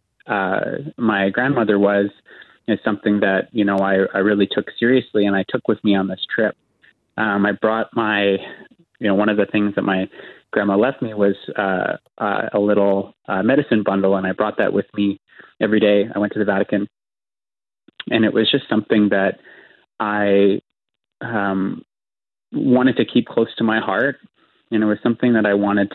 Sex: male